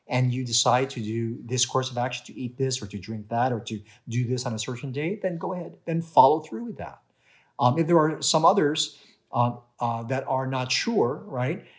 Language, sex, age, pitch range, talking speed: English, male, 50-69, 120-165 Hz, 230 wpm